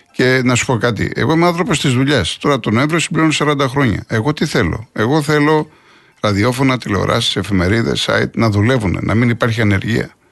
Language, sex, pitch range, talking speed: Greek, male, 110-145 Hz, 180 wpm